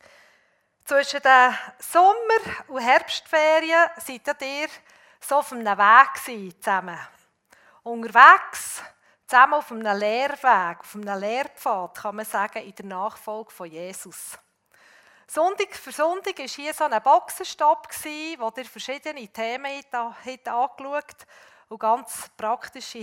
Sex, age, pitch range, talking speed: female, 40-59, 215-280 Hz, 115 wpm